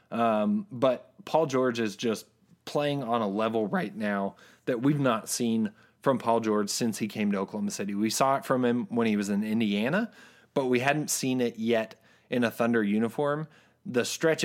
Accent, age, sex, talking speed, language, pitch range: American, 30-49, male, 195 wpm, English, 110-135 Hz